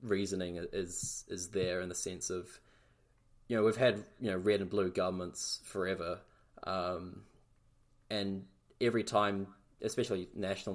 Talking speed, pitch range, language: 140 wpm, 95-115 Hz, English